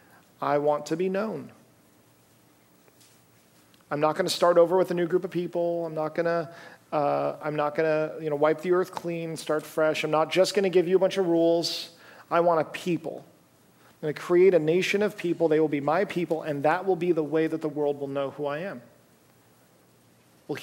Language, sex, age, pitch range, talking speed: English, male, 40-59, 140-170 Hz, 225 wpm